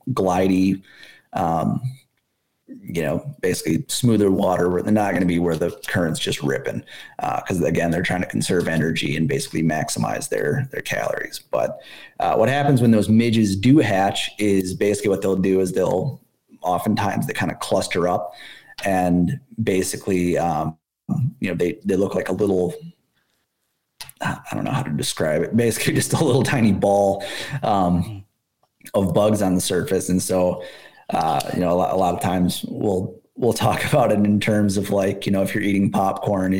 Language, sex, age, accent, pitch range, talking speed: English, male, 30-49, American, 95-110 Hz, 180 wpm